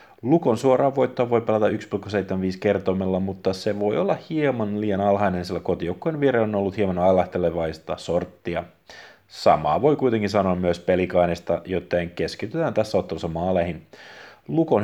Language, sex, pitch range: Finnish, male, 90-115 Hz